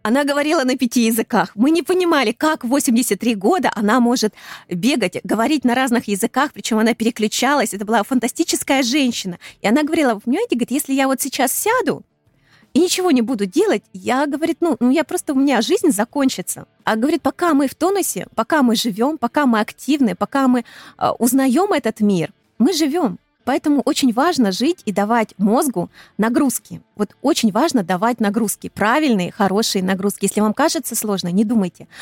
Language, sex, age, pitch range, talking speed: Russian, female, 20-39, 205-280 Hz, 170 wpm